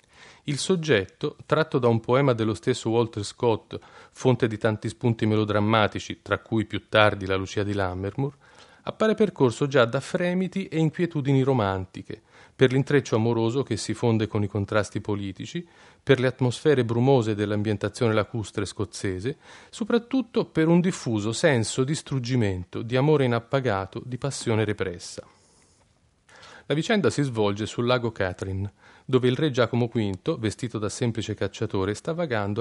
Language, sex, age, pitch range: Italian, male, 40-59, 105-140 Hz